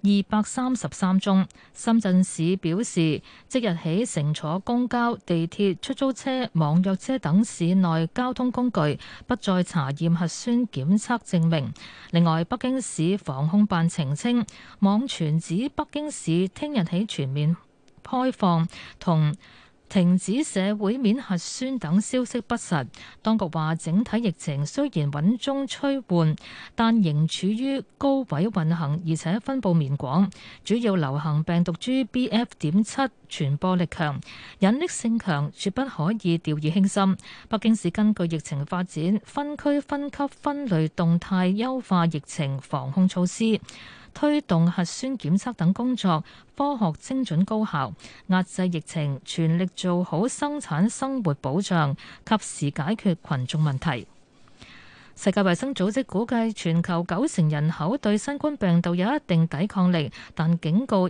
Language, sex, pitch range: Chinese, female, 165-230 Hz